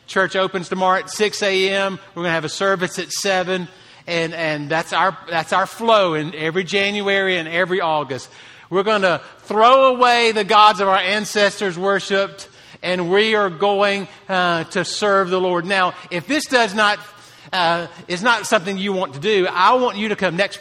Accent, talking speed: American, 190 wpm